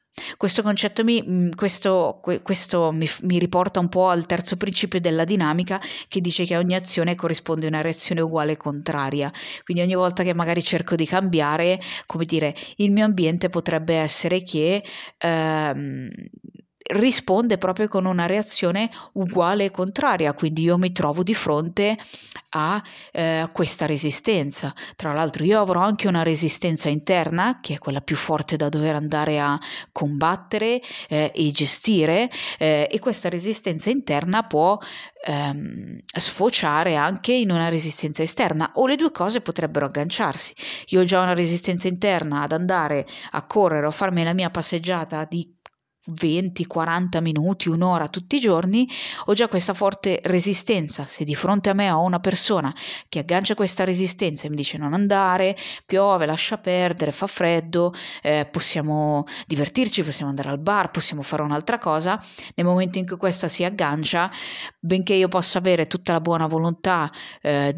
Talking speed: 160 wpm